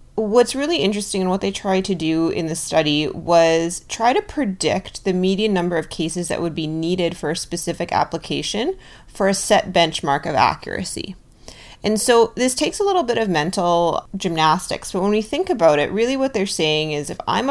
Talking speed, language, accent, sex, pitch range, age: 200 wpm, English, American, female, 155-200 Hz, 30-49